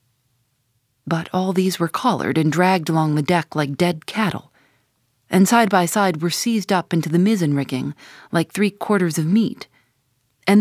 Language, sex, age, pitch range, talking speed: English, female, 40-59, 130-185 Hz, 160 wpm